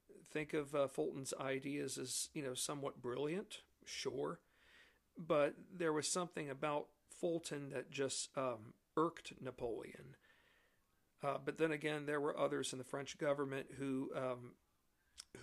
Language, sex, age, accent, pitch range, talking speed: English, male, 50-69, American, 130-145 Hz, 135 wpm